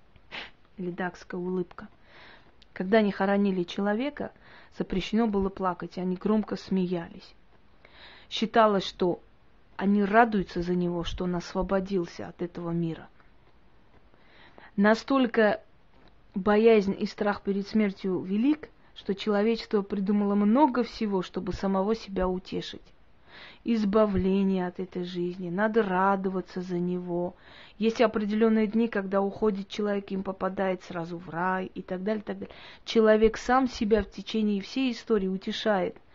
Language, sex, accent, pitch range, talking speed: Russian, female, native, 185-220 Hz, 120 wpm